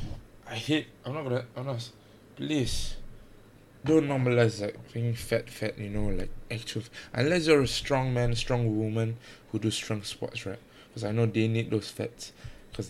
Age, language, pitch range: 20-39, English, 110-130 Hz